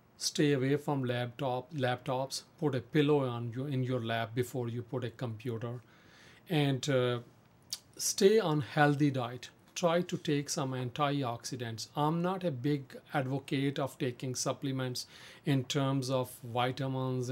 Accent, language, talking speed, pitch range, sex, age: Indian, English, 140 wpm, 120-140 Hz, male, 40-59